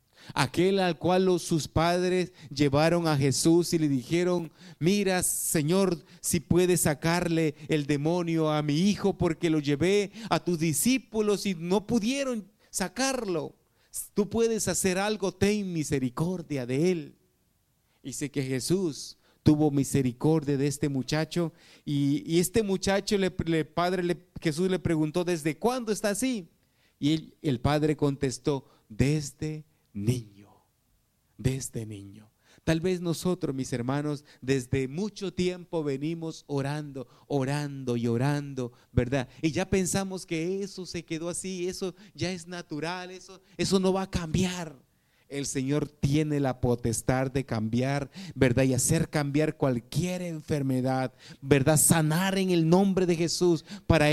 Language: Spanish